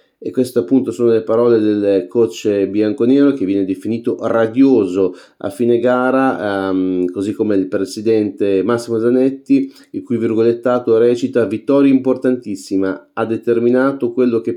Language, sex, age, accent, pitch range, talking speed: Italian, male, 30-49, native, 105-130 Hz, 135 wpm